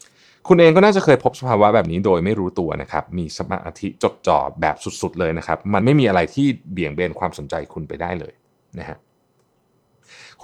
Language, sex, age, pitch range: Thai, male, 30-49, 90-120 Hz